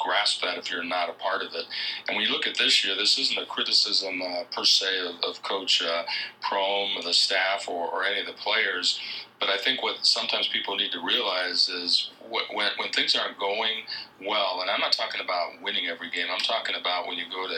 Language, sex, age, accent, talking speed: English, male, 40-59, American, 230 wpm